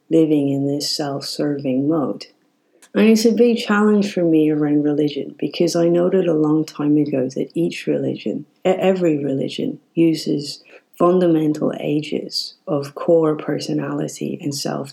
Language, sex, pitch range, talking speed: English, female, 150-170 Hz, 140 wpm